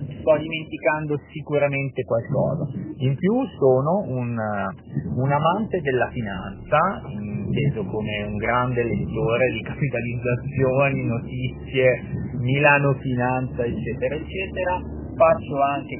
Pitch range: 120-150 Hz